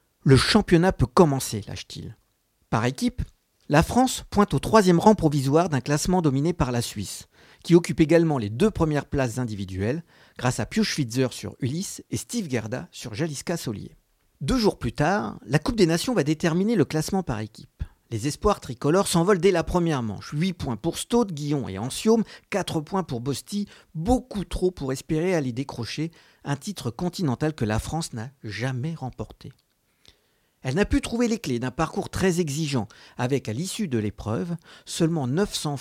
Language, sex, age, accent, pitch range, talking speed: French, male, 50-69, French, 125-180 Hz, 175 wpm